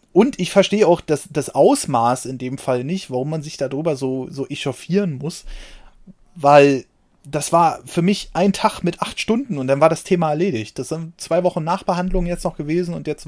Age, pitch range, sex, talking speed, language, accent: 30-49, 135-180 Hz, male, 205 wpm, German, German